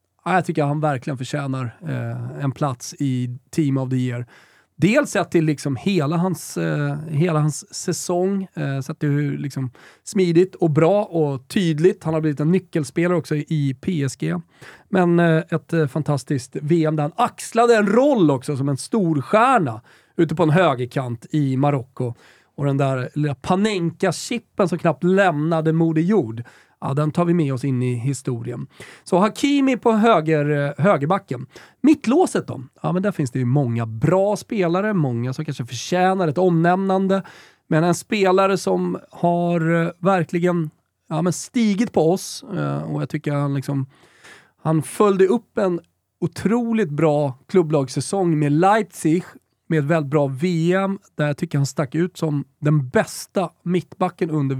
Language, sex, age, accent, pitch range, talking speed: Swedish, male, 30-49, native, 145-185 Hz, 155 wpm